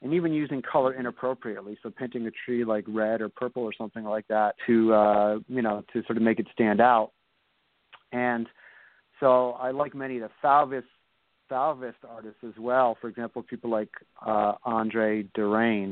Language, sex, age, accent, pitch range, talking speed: English, male, 40-59, American, 110-135 Hz, 175 wpm